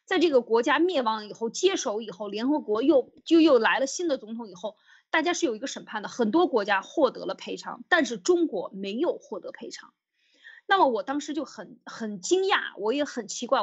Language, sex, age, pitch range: Chinese, female, 20-39, 215-300 Hz